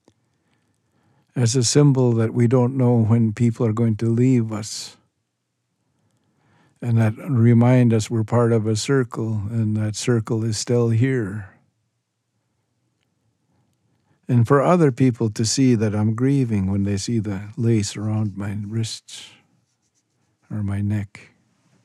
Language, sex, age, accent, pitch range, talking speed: English, male, 60-79, American, 110-125 Hz, 135 wpm